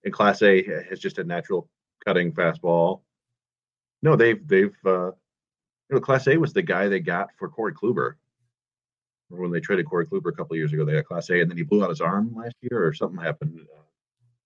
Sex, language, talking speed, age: male, English, 215 wpm, 30-49